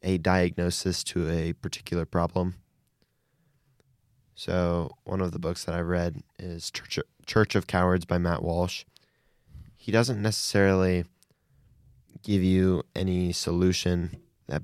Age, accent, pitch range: 20-39, American, 90-100 Hz